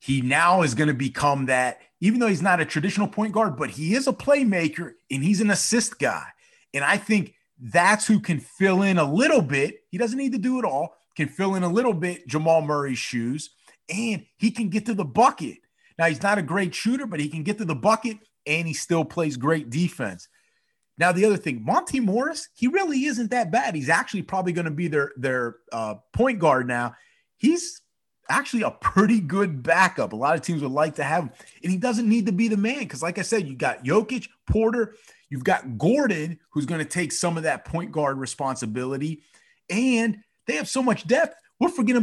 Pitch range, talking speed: 155-230 Hz, 220 wpm